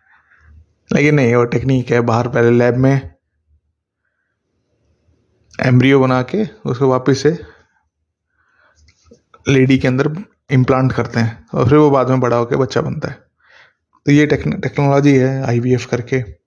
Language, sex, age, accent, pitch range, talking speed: Hindi, male, 20-39, native, 120-145 Hz, 140 wpm